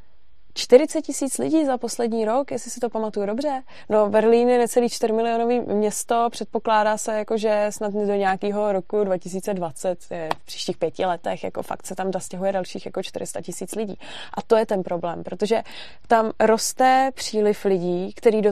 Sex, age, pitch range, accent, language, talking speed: female, 20-39, 190-220 Hz, native, Czech, 170 wpm